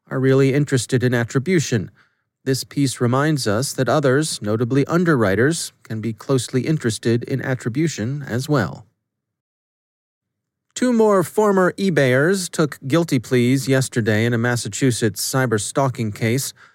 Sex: male